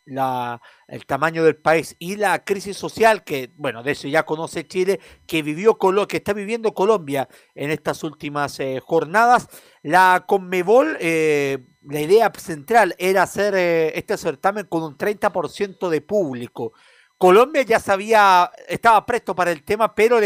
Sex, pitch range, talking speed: male, 165-225 Hz, 155 wpm